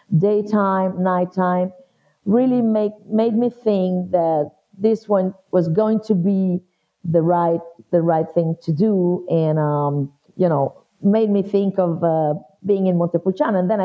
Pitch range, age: 165-200 Hz, 50-69